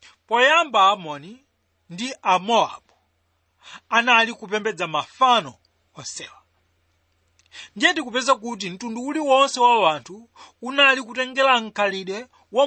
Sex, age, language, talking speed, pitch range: male, 40-59, English, 85 wpm, 195-260 Hz